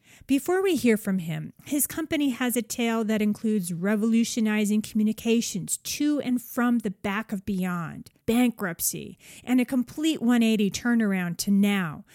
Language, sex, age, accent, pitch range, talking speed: English, female, 40-59, American, 190-245 Hz, 145 wpm